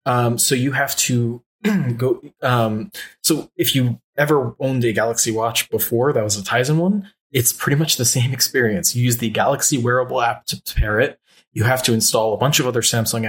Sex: male